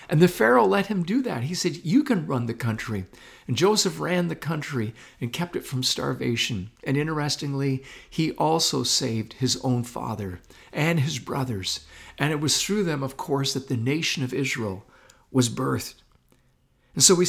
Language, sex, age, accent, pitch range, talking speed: English, male, 50-69, American, 125-180 Hz, 180 wpm